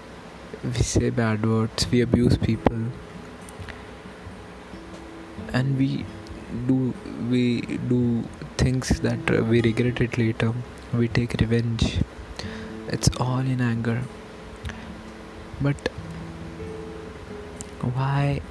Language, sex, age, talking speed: English, male, 20-39, 90 wpm